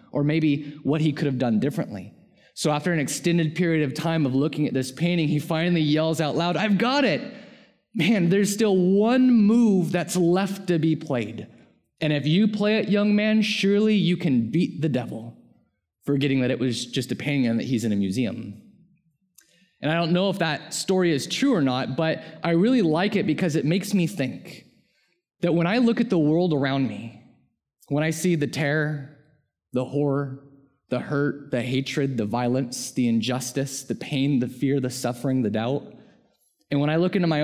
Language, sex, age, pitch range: English, male, 20-39, 135-175 Hz